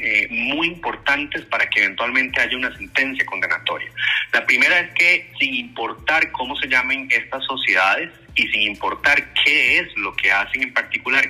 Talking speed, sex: 165 wpm, male